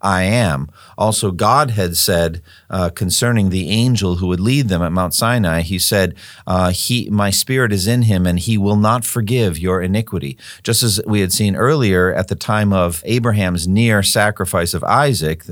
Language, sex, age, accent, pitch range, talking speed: English, male, 50-69, American, 90-115 Hz, 185 wpm